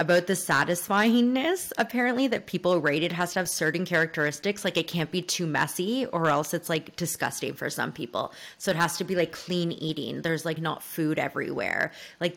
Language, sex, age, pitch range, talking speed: English, female, 20-39, 160-190 Hz, 195 wpm